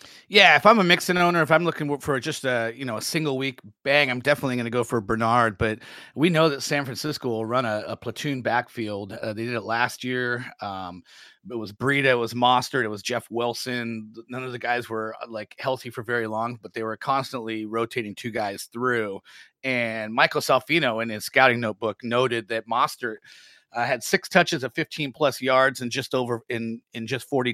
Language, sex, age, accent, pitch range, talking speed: English, male, 30-49, American, 115-135 Hz, 215 wpm